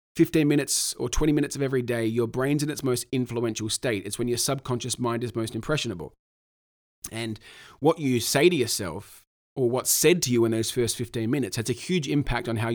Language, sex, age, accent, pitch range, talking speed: English, male, 30-49, Australian, 115-145 Hz, 210 wpm